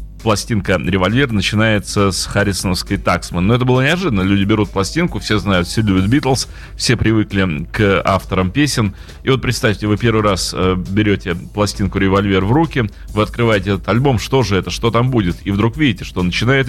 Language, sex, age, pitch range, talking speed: Russian, male, 30-49, 95-120 Hz, 175 wpm